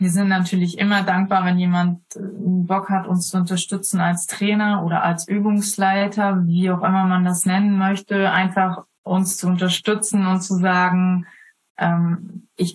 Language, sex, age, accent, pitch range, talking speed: German, female, 20-39, German, 175-195 Hz, 160 wpm